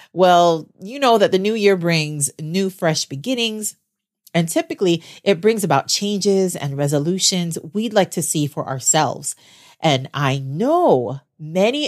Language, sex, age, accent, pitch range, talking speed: English, female, 30-49, American, 150-200 Hz, 145 wpm